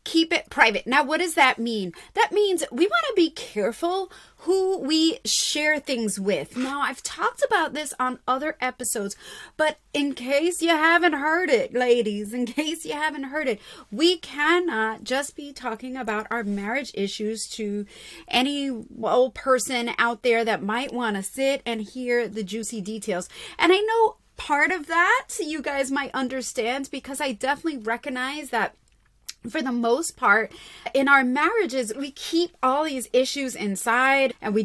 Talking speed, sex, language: 170 wpm, female, English